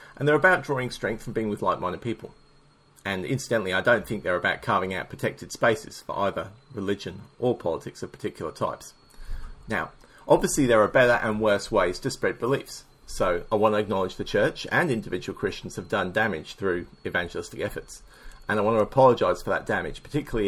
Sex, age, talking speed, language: male, 40-59, 190 wpm, English